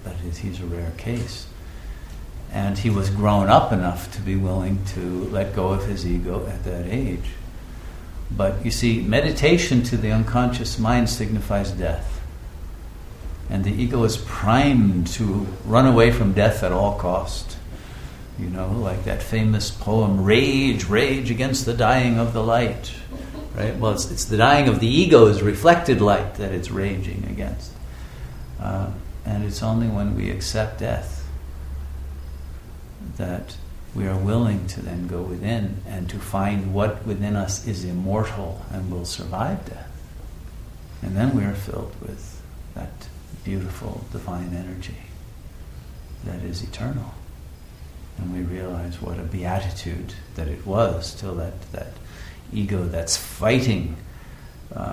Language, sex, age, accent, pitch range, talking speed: English, male, 60-79, American, 90-110 Hz, 140 wpm